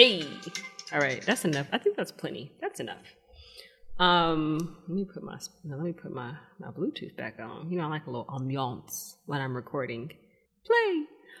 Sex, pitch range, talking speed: female, 150-205 Hz, 180 wpm